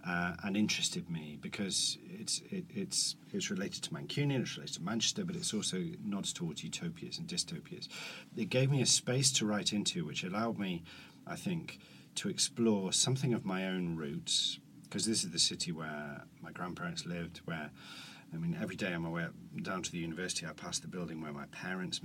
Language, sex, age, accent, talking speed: English, male, 40-59, British, 200 wpm